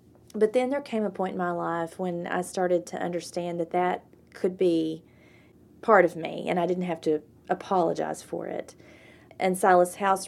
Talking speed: 185 wpm